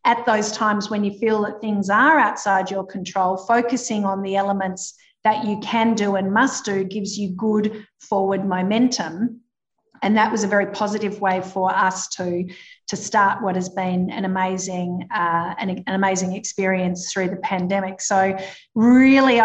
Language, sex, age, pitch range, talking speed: English, female, 50-69, 190-220 Hz, 170 wpm